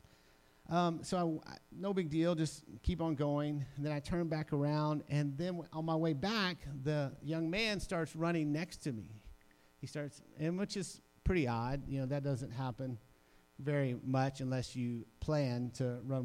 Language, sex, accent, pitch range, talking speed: English, male, American, 115-165 Hz, 180 wpm